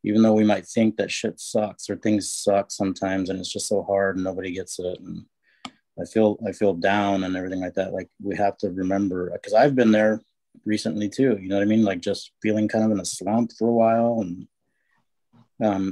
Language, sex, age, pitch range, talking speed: English, male, 30-49, 95-110 Hz, 225 wpm